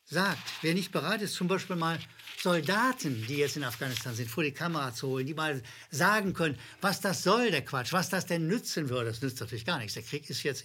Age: 60-79